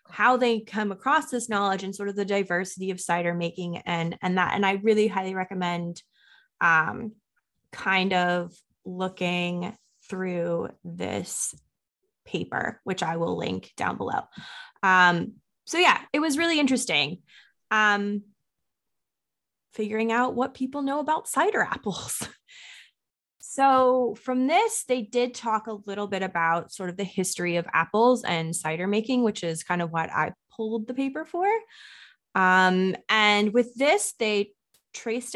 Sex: female